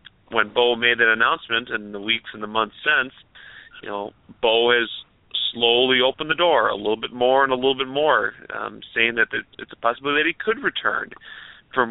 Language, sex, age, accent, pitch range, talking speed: English, male, 30-49, American, 105-130 Hz, 200 wpm